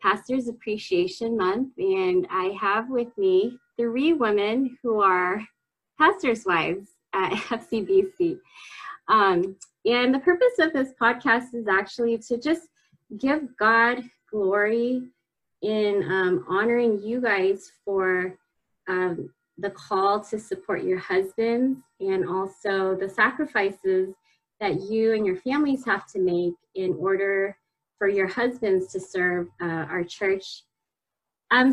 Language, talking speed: English, 125 wpm